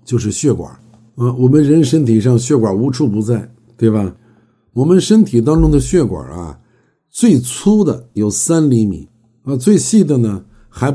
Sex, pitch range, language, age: male, 115-145 Hz, Chinese, 60-79